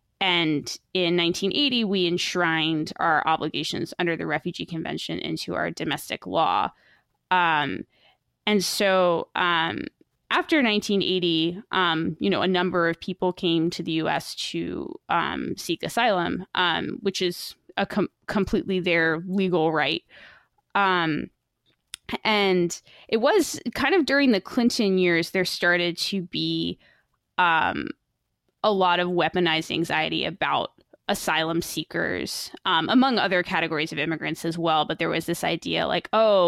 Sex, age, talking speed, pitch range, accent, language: female, 20-39, 135 wpm, 160-195 Hz, American, English